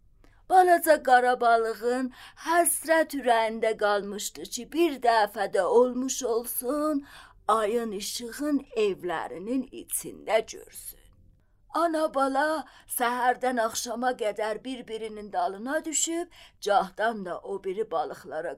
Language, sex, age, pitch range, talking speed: Persian, female, 30-49, 200-300 Hz, 95 wpm